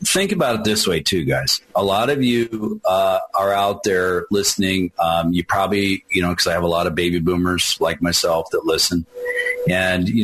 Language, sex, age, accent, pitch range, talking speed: English, male, 40-59, American, 90-120 Hz, 205 wpm